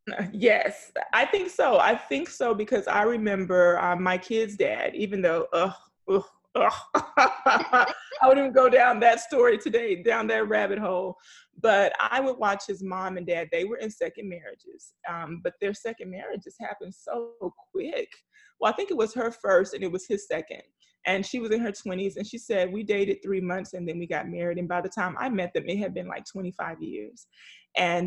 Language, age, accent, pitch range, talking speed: English, 20-39, American, 180-225 Hz, 205 wpm